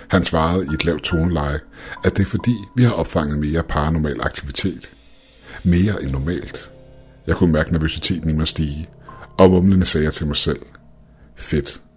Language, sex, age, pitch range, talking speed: Danish, male, 60-79, 80-100 Hz, 165 wpm